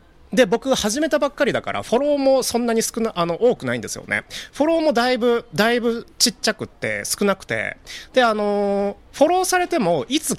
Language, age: Japanese, 30-49